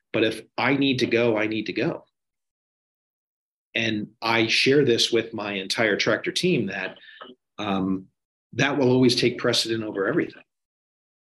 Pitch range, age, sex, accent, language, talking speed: 100-120 Hz, 40-59, male, American, English, 150 wpm